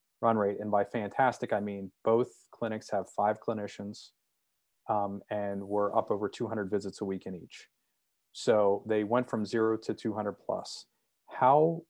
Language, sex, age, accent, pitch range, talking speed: English, male, 30-49, American, 100-110 Hz, 170 wpm